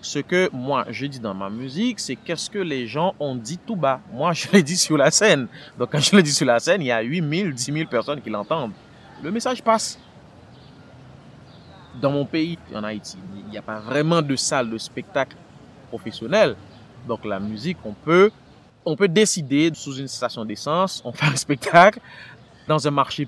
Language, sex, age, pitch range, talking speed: French, male, 30-49, 110-150 Hz, 205 wpm